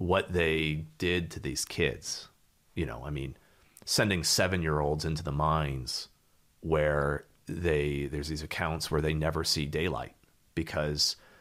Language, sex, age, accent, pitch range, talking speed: English, male, 30-49, American, 75-100 Hz, 135 wpm